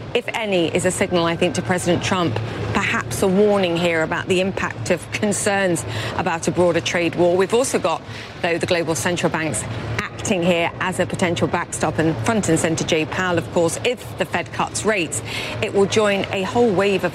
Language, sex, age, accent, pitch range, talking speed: English, female, 30-49, British, 155-190 Hz, 205 wpm